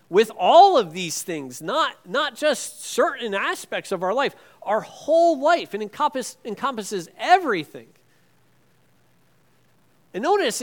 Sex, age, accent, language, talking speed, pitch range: male, 40-59, American, English, 125 wpm, 170-250 Hz